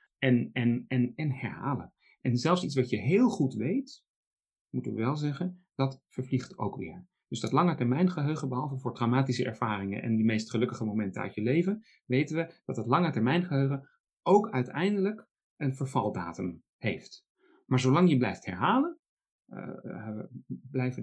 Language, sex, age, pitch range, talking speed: Dutch, male, 40-59, 110-155 Hz, 155 wpm